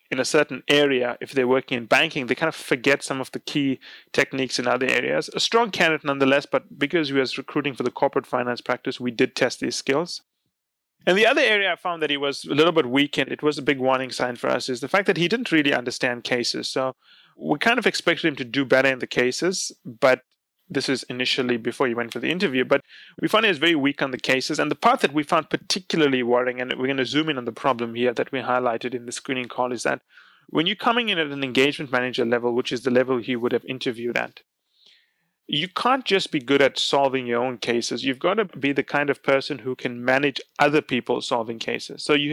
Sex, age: male, 30-49